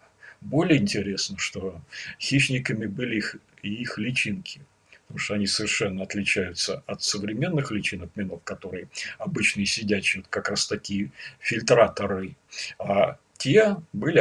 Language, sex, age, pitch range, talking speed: Russian, male, 40-59, 105-155 Hz, 110 wpm